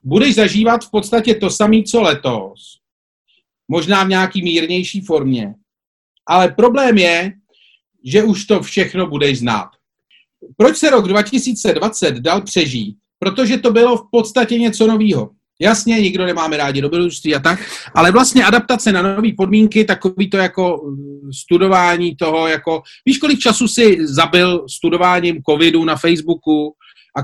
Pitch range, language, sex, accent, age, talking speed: 150-210 Hz, Czech, male, native, 40-59, 140 wpm